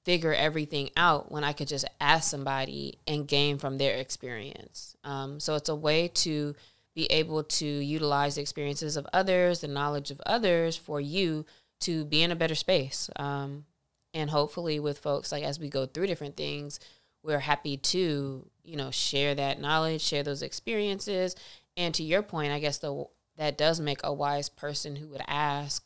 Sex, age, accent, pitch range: female, 20-39, American, 145-165 Hz